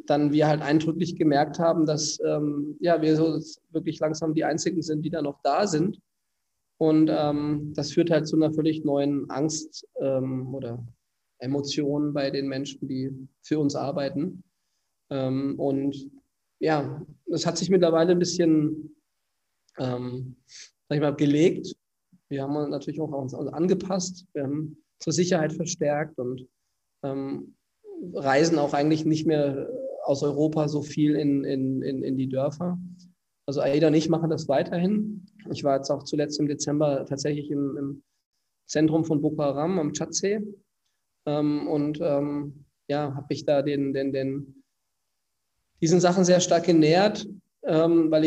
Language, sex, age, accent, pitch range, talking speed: German, male, 20-39, German, 140-165 Hz, 150 wpm